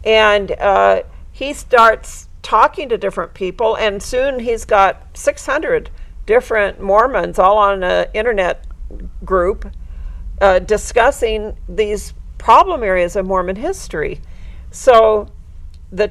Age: 60-79